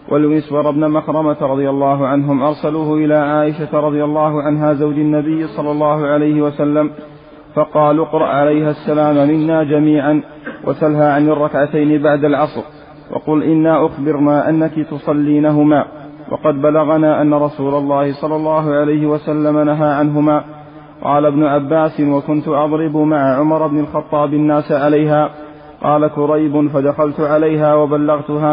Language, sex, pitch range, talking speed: Arabic, male, 150-155 Hz, 130 wpm